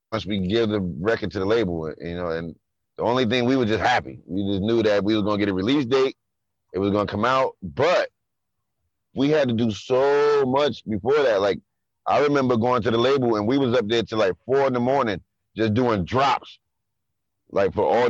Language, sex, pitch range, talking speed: English, male, 100-120 Hz, 230 wpm